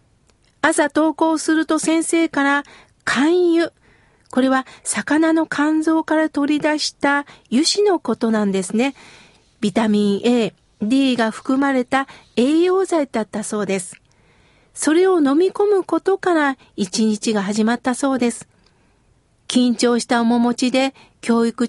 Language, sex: Japanese, female